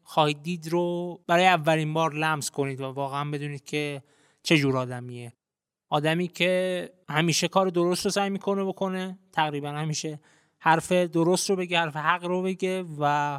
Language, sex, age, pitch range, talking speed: Persian, male, 20-39, 150-200 Hz, 155 wpm